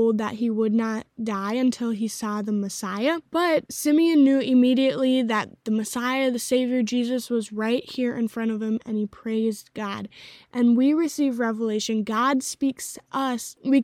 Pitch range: 225-255 Hz